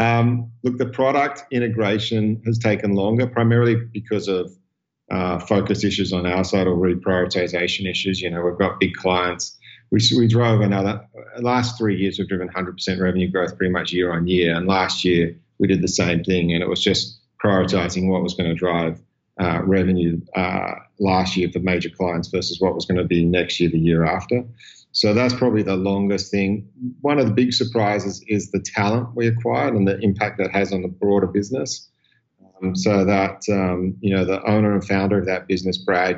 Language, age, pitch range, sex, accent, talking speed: English, 40-59, 90-100 Hz, male, Australian, 200 wpm